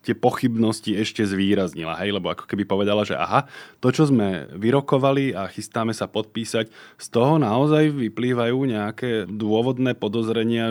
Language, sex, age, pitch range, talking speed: Slovak, male, 20-39, 95-110 Hz, 140 wpm